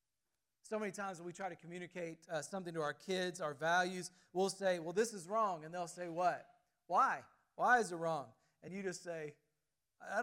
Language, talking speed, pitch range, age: English, 205 wpm, 155-210 Hz, 40-59